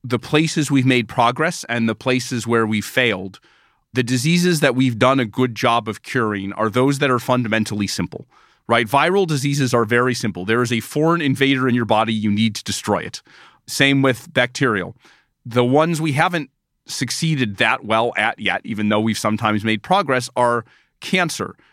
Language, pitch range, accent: English, 115-140 Hz, American